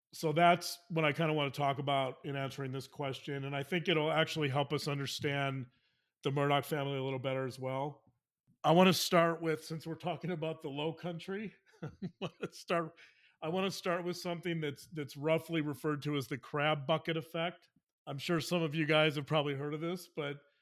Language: English